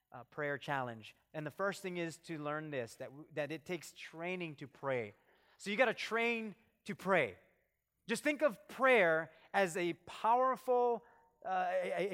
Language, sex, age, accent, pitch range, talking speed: English, male, 30-49, American, 170-255 Hz, 170 wpm